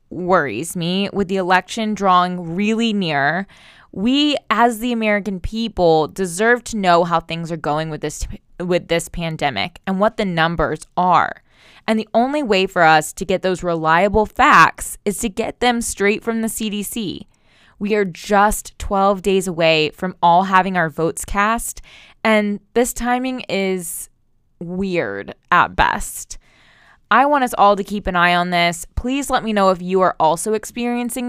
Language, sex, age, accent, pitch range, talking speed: English, female, 20-39, American, 170-215 Hz, 165 wpm